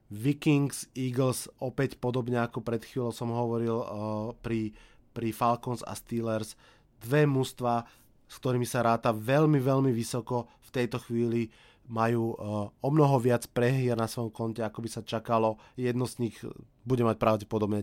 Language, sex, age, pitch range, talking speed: Slovak, male, 20-39, 115-130 Hz, 150 wpm